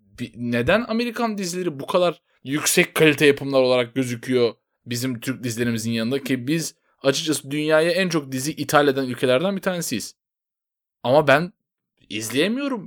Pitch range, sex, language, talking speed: 125-175 Hz, male, Turkish, 135 wpm